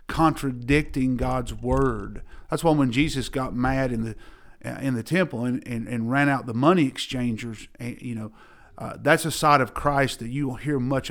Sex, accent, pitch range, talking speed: male, American, 125-150 Hz, 190 wpm